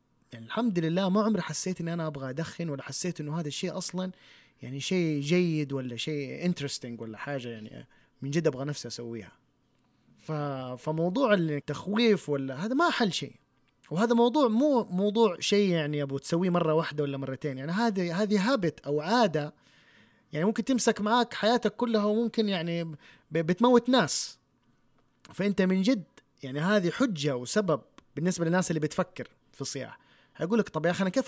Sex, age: male, 30-49